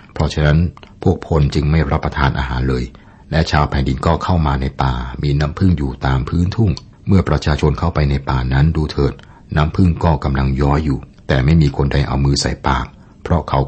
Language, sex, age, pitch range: Thai, male, 60-79, 70-85 Hz